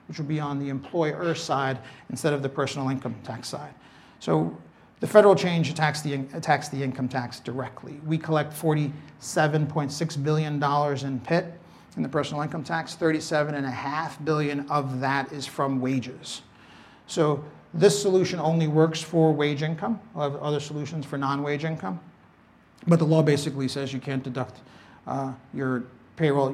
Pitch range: 130-155 Hz